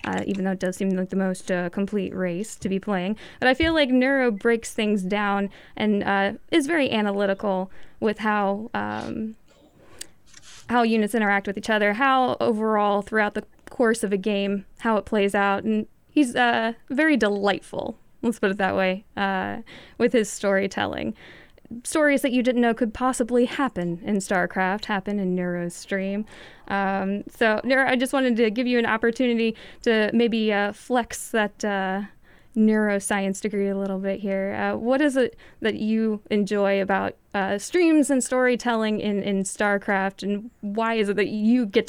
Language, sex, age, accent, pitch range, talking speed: English, female, 10-29, American, 195-235 Hz, 175 wpm